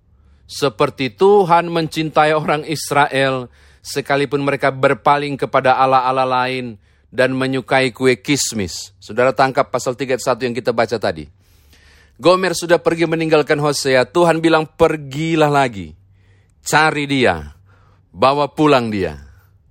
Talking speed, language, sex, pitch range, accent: 115 wpm, Indonesian, male, 95-140 Hz, native